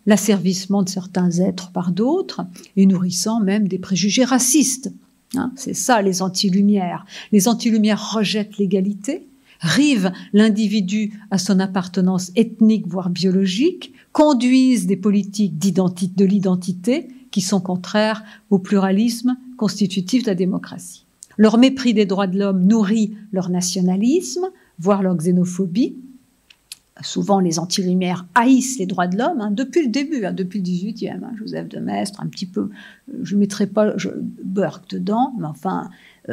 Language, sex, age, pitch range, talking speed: French, female, 50-69, 185-225 Hz, 140 wpm